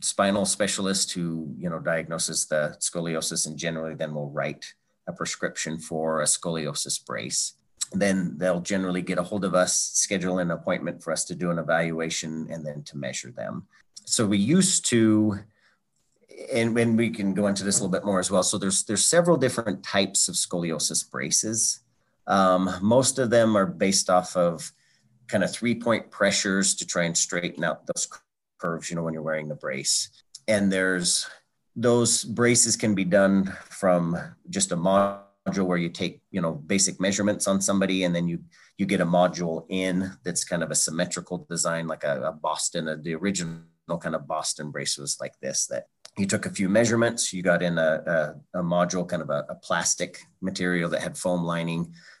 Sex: male